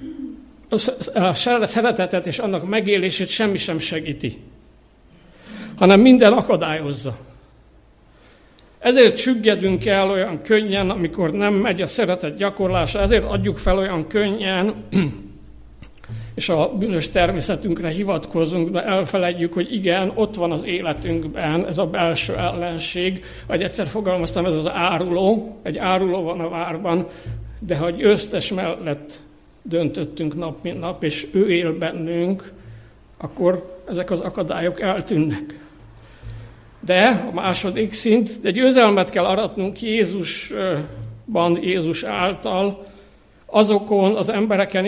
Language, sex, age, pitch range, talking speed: Hungarian, male, 60-79, 165-205 Hz, 115 wpm